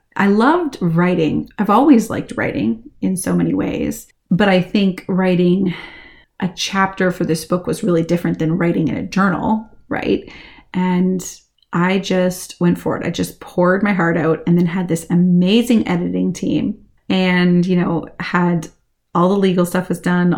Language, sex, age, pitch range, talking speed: English, female, 30-49, 175-215 Hz, 170 wpm